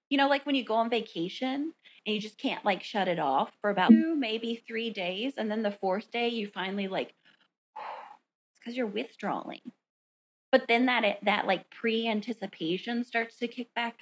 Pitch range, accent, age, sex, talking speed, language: 175-225 Hz, American, 30-49, female, 190 wpm, English